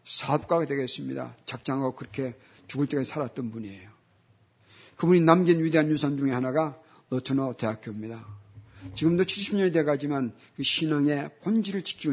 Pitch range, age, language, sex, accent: 115-165 Hz, 50-69, Korean, male, native